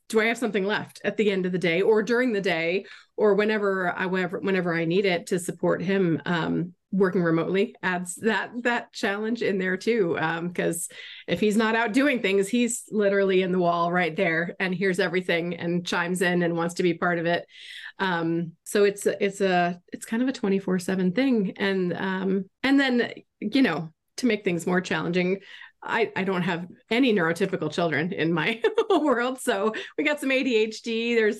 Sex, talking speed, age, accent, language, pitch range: female, 195 wpm, 30-49, American, English, 175-215 Hz